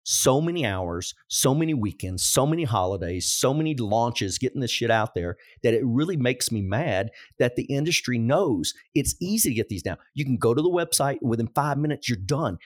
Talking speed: 215 wpm